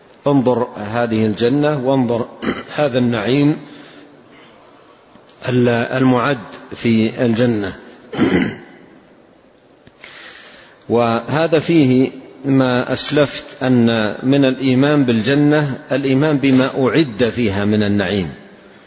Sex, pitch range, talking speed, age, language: male, 115-135 Hz, 75 wpm, 50-69, Arabic